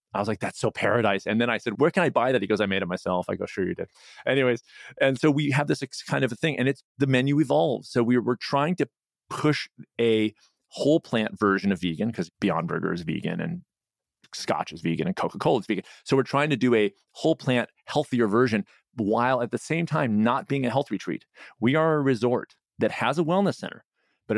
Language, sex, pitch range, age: English, male, 100-135 Hz, 30-49